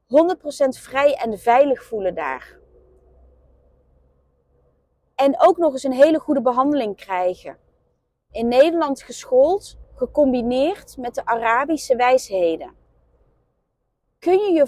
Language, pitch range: Dutch, 230-315 Hz